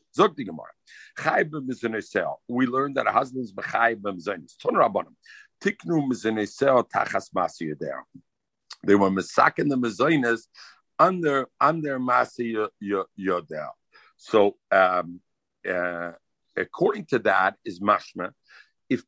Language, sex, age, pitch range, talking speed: English, male, 50-69, 135-195 Hz, 115 wpm